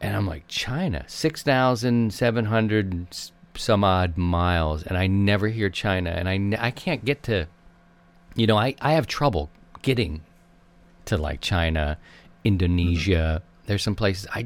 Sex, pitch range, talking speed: male, 85-115 Hz, 145 wpm